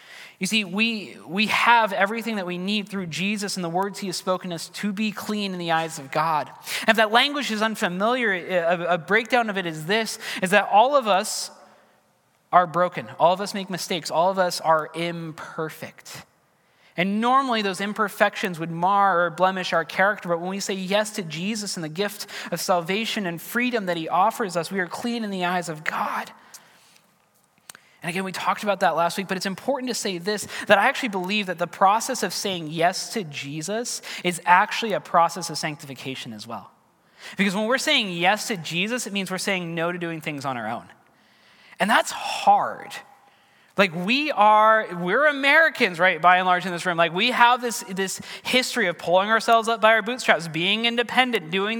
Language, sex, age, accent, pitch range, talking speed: English, male, 20-39, American, 175-225 Hz, 205 wpm